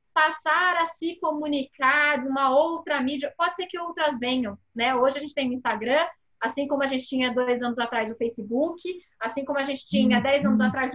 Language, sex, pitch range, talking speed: Portuguese, female, 250-310 Hz, 210 wpm